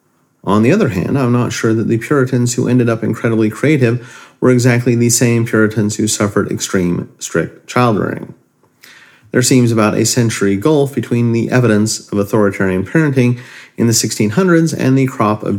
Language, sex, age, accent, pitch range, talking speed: English, male, 40-59, American, 105-130 Hz, 170 wpm